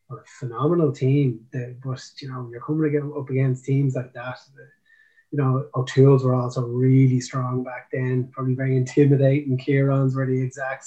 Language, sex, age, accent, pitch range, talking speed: English, male, 20-39, Irish, 130-150 Hz, 175 wpm